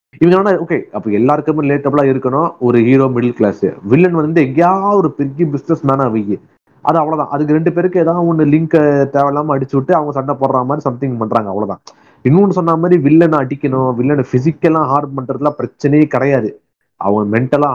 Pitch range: 125-170 Hz